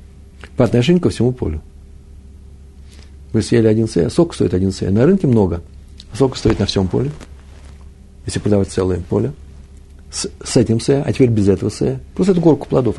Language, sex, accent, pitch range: Russian, male, native, 75-110 Hz